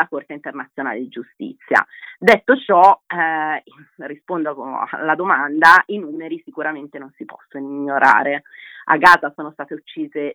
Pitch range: 155-210 Hz